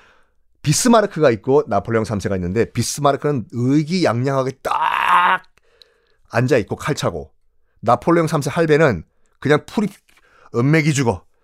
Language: Korean